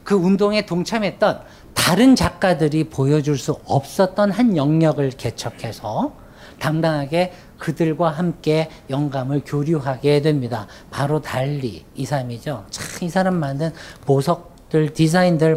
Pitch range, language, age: 140-195 Hz, Korean, 50-69